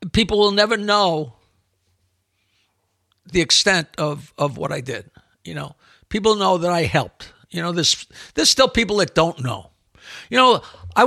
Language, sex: English, male